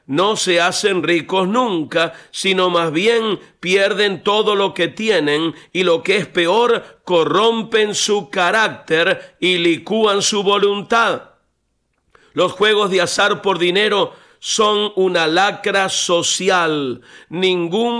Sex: male